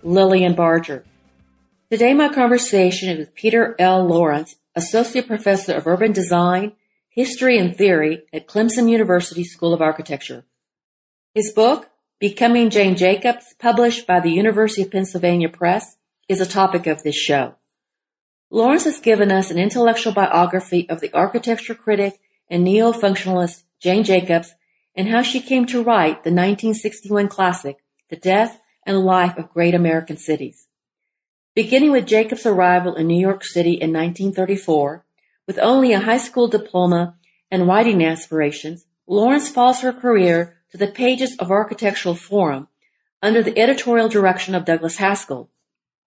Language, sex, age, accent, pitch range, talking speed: English, female, 40-59, American, 170-225 Hz, 145 wpm